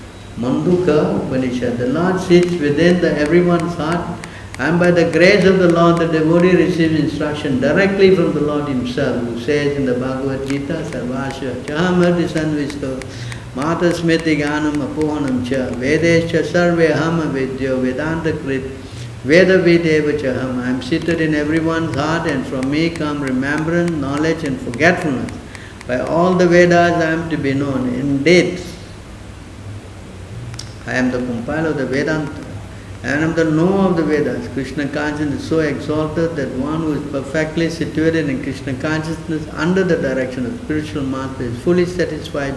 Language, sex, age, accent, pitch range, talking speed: English, male, 60-79, Indian, 130-165 Hz, 135 wpm